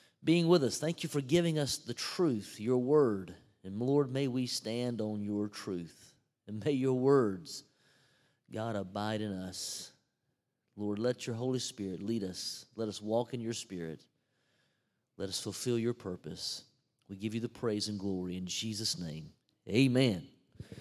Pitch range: 115-150 Hz